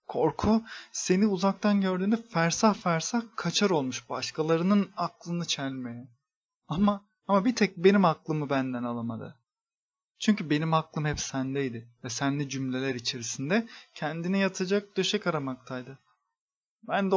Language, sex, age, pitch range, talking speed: Turkish, male, 30-49, 145-210 Hz, 115 wpm